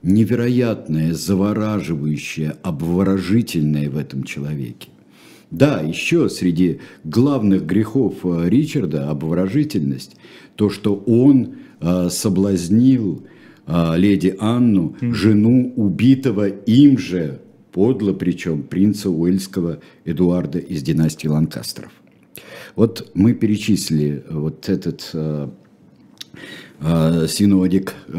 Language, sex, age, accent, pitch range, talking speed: Russian, male, 50-69, native, 85-110 Hz, 80 wpm